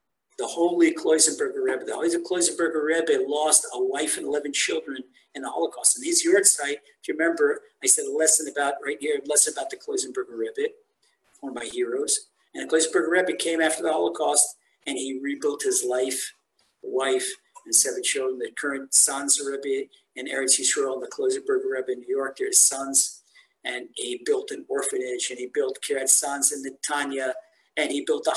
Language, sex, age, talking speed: English, male, 50-69, 190 wpm